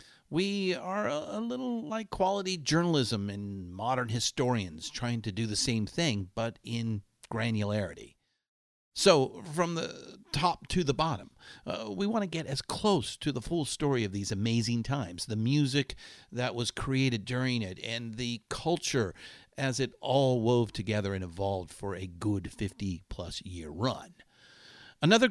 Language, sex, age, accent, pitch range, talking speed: English, male, 50-69, American, 105-145 Hz, 155 wpm